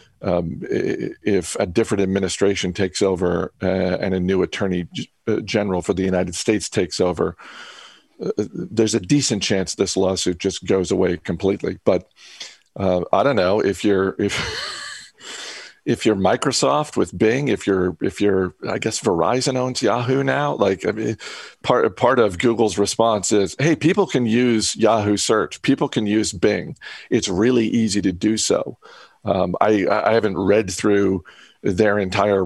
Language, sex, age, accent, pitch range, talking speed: English, male, 50-69, American, 95-110 Hz, 165 wpm